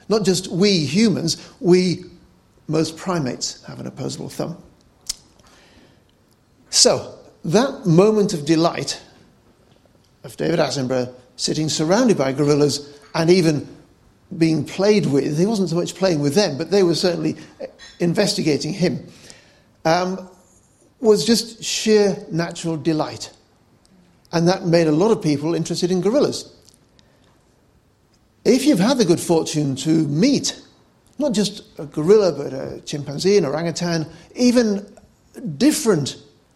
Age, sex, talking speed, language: 50-69, male, 125 wpm, English